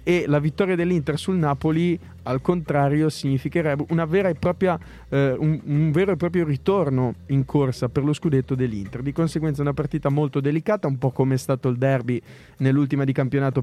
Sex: male